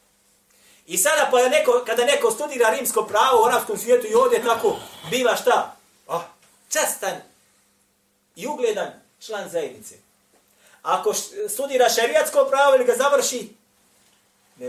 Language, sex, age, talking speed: English, male, 30-49, 135 wpm